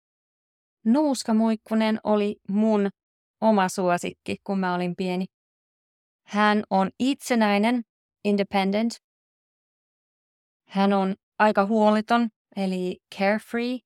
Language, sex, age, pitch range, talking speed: Finnish, female, 30-49, 185-225 Hz, 80 wpm